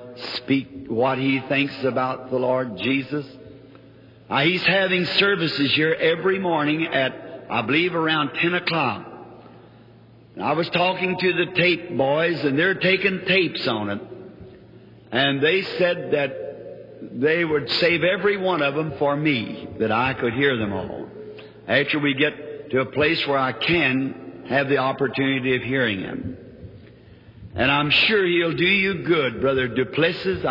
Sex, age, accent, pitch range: male, 50-69, American, 125-165 Hz